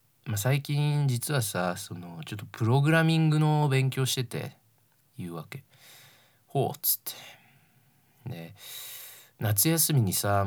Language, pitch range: Japanese, 110-130 Hz